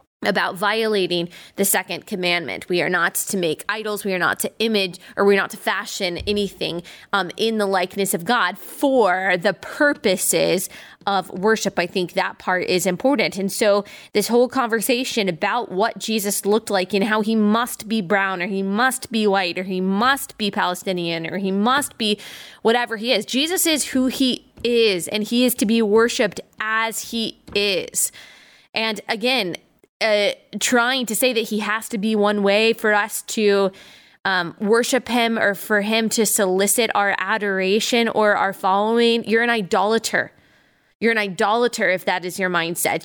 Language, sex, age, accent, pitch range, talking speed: English, female, 20-39, American, 195-235 Hz, 175 wpm